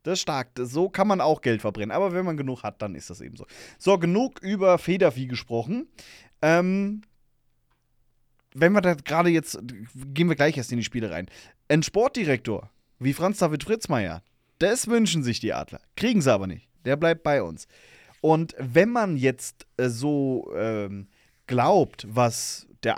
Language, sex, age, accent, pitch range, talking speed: German, male, 30-49, German, 120-165 Hz, 170 wpm